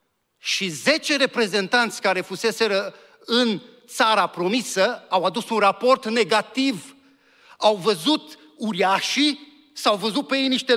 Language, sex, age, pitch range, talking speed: Romanian, male, 40-59, 170-245 Hz, 115 wpm